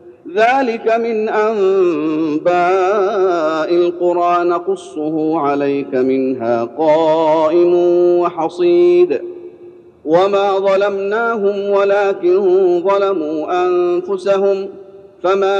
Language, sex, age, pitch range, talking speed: Arabic, male, 40-59, 155-200 Hz, 60 wpm